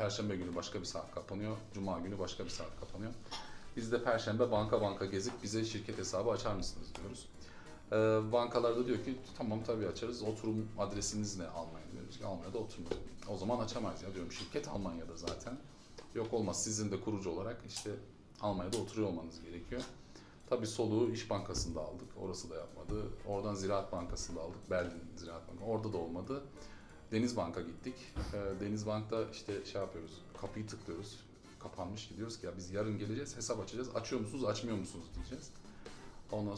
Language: Turkish